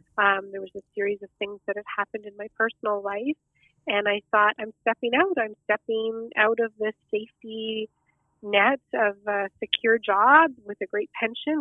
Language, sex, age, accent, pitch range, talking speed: English, female, 30-49, American, 200-225 Hz, 180 wpm